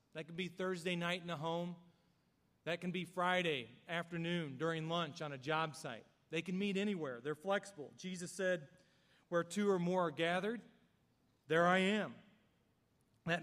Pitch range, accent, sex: 155-180 Hz, American, male